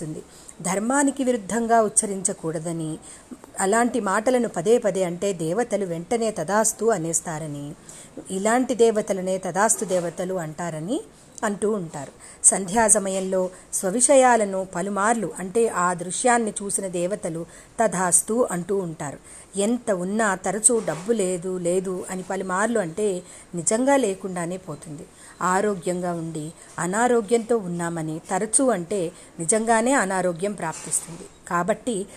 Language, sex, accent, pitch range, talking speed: Telugu, female, native, 180-235 Hz, 100 wpm